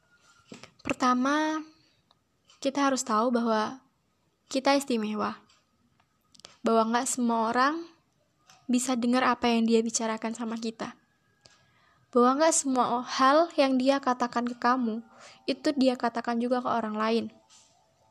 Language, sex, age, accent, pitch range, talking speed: Indonesian, female, 10-29, native, 235-280 Hz, 115 wpm